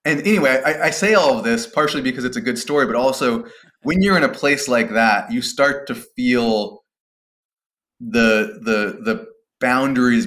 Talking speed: 180 wpm